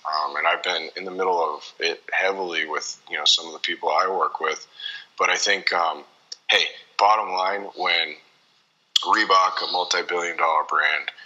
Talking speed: 175 wpm